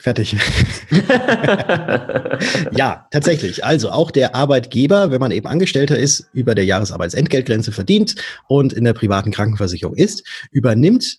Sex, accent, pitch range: male, German, 105-140 Hz